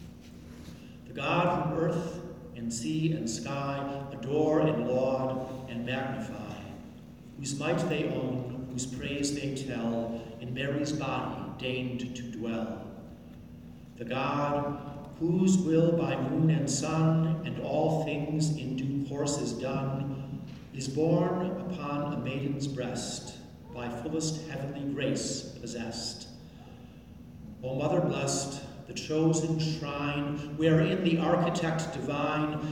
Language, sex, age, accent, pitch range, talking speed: English, male, 50-69, American, 120-155 Hz, 115 wpm